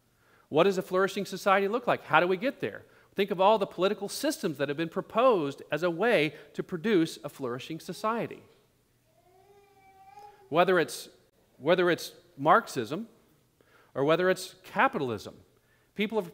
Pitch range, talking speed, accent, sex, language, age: 135-195 Hz, 145 wpm, American, male, English, 40-59